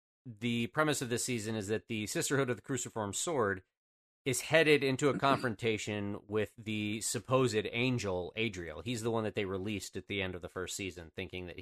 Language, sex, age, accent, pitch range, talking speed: English, male, 30-49, American, 95-125 Hz, 195 wpm